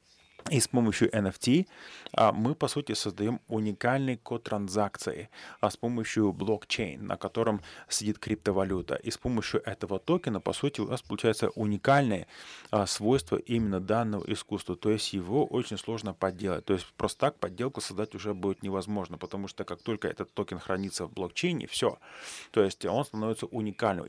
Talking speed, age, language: 165 wpm, 30-49, Russian